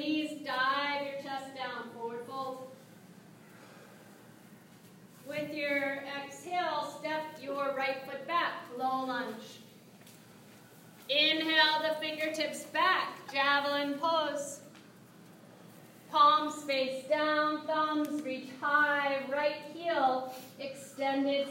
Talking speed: 90 wpm